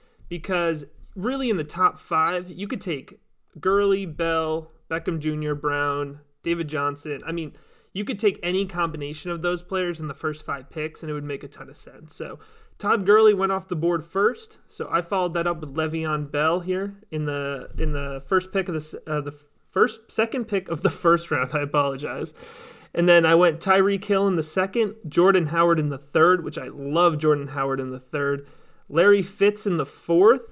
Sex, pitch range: male, 150-195 Hz